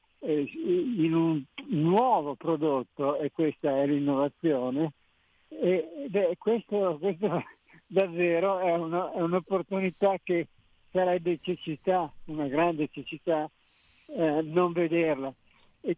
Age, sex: 60-79, male